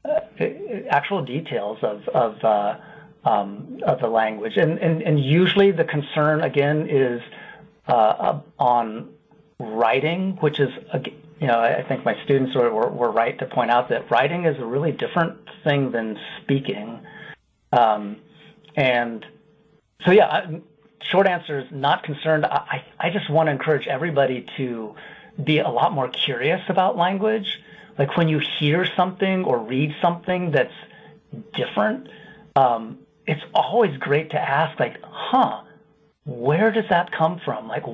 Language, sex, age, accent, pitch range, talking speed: English, male, 40-59, American, 135-170 Hz, 155 wpm